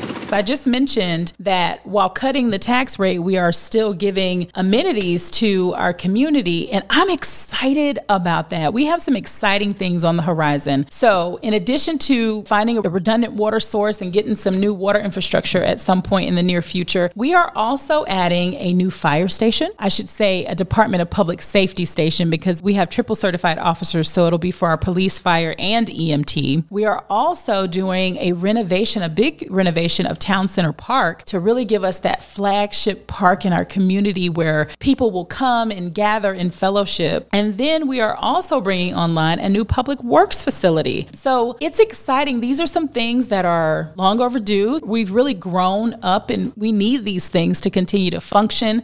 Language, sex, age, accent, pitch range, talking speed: English, female, 40-59, American, 180-225 Hz, 185 wpm